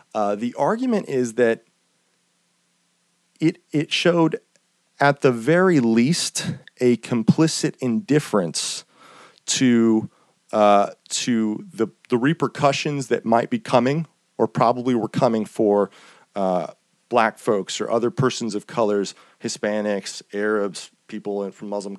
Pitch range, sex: 105-140 Hz, male